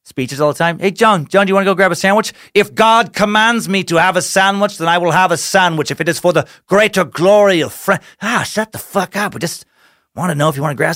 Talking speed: 290 wpm